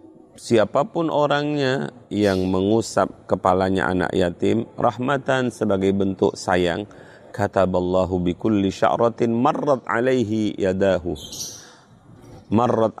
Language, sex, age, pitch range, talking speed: Indonesian, male, 40-59, 100-125 Hz, 90 wpm